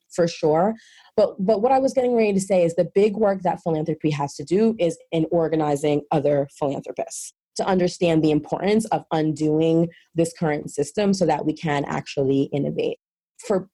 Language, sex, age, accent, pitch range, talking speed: English, female, 30-49, American, 155-205 Hz, 180 wpm